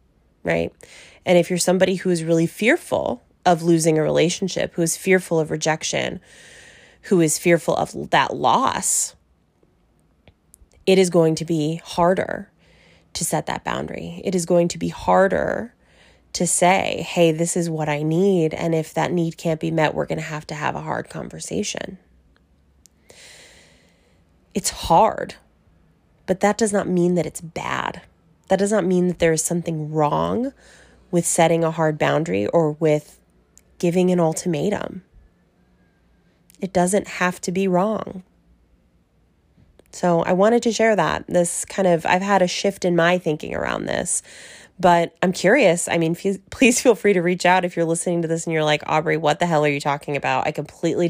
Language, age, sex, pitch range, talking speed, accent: English, 20-39, female, 150-180 Hz, 170 wpm, American